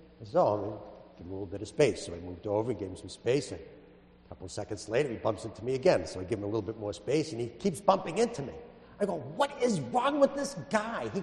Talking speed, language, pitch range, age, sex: 295 wpm, English, 105-160 Hz, 50-69, male